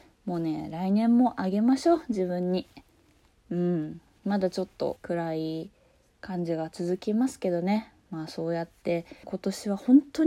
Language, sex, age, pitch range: Japanese, female, 20-39, 160-215 Hz